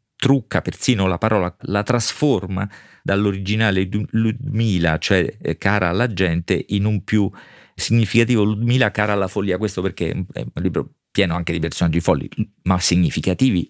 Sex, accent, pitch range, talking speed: male, native, 95-110 Hz, 140 wpm